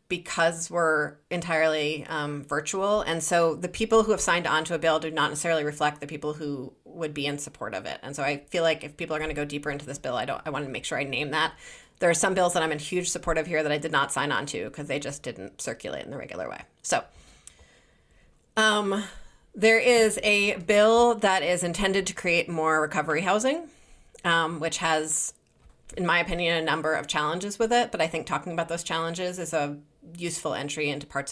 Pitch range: 155-180 Hz